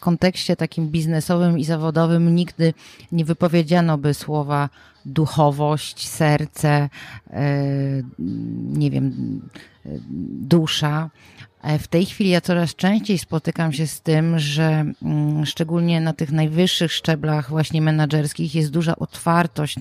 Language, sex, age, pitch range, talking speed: Polish, female, 30-49, 150-175 Hz, 110 wpm